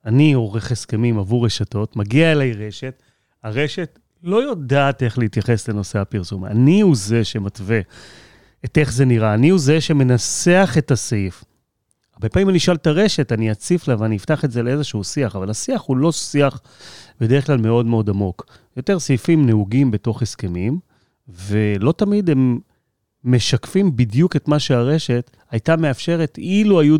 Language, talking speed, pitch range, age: Hebrew, 160 wpm, 110-150 Hz, 30-49